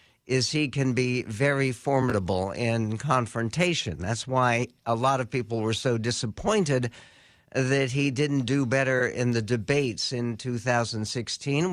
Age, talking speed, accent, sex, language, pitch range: 60-79, 140 wpm, American, male, English, 115-140 Hz